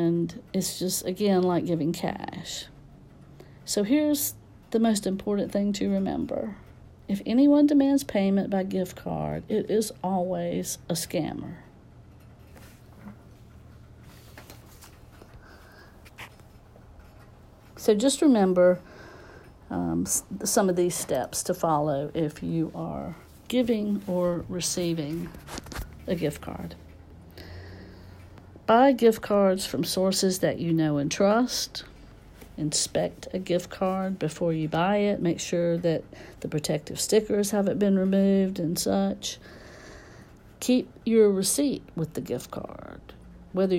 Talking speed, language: 115 wpm, English